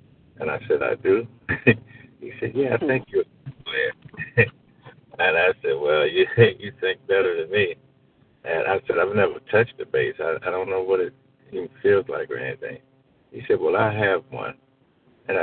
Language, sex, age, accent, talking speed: English, male, 60-79, American, 185 wpm